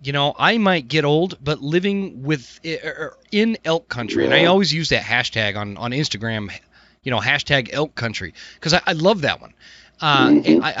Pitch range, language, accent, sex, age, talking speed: 120-155 Hz, English, American, male, 30-49, 200 wpm